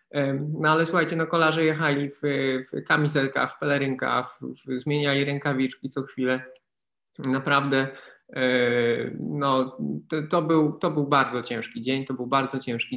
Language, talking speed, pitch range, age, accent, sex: Polish, 150 wpm, 130-155 Hz, 20-39, native, male